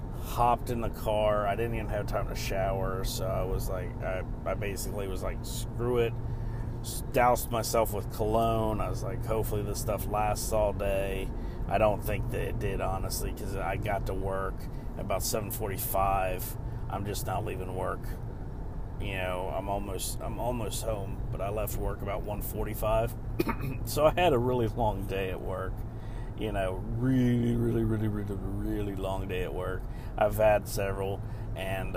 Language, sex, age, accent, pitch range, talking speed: English, male, 40-59, American, 100-115 Hz, 170 wpm